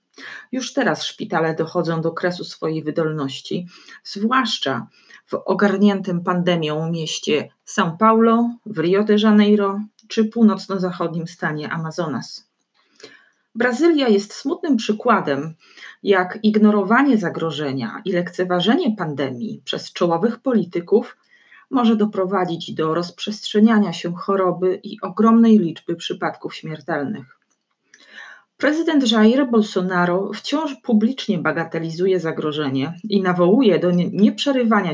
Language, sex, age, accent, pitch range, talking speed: Polish, female, 30-49, native, 170-225 Hz, 100 wpm